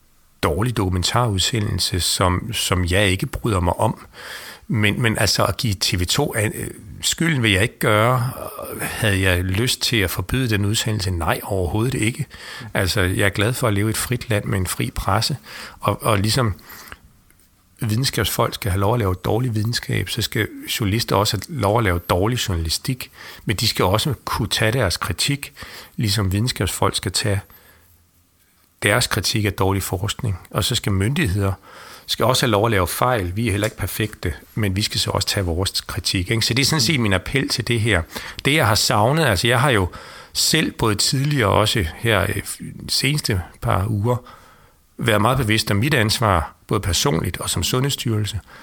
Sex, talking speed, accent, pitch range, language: male, 185 wpm, native, 95-120 Hz, Danish